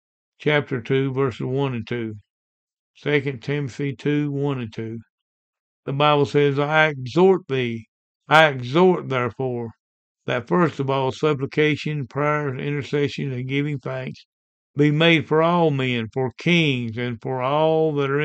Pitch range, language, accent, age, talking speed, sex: 130-150 Hz, English, American, 60-79, 140 wpm, male